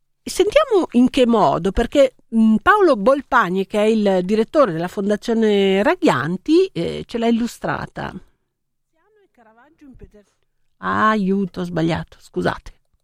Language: Italian